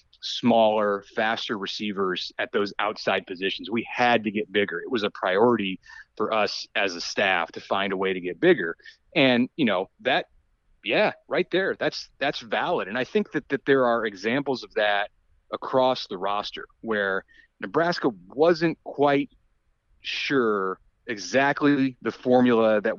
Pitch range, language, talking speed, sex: 110-145 Hz, English, 155 wpm, male